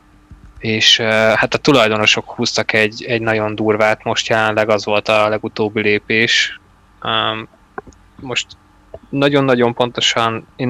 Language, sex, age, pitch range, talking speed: Hungarian, male, 20-39, 105-115 Hz, 110 wpm